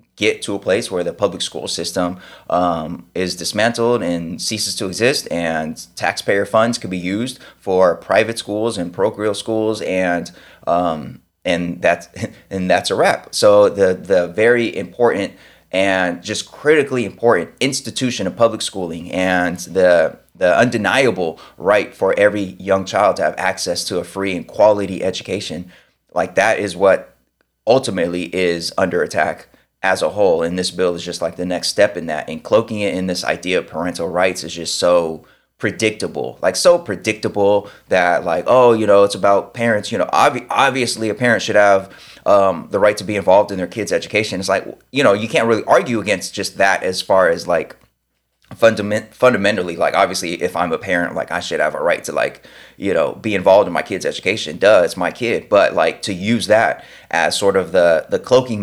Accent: American